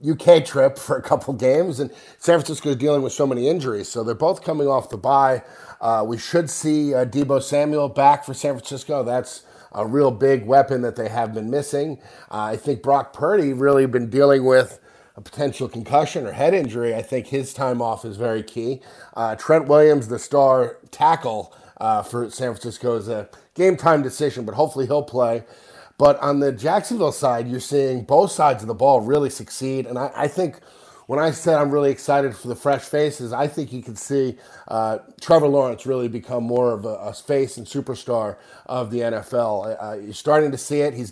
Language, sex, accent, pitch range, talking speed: English, male, American, 120-145 Hz, 205 wpm